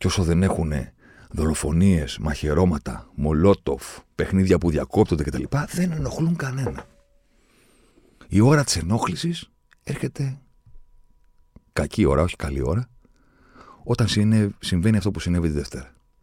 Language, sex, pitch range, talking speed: Greek, male, 70-95 Hz, 120 wpm